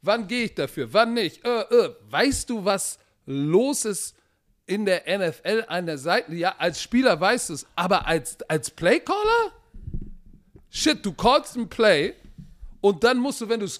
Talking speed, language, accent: 180 wpm, German, German